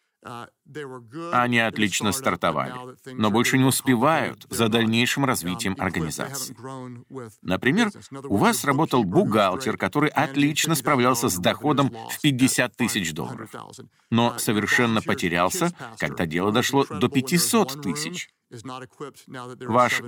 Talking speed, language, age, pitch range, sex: 105 wpm, Russian, 50-69, 115-145 Hz, male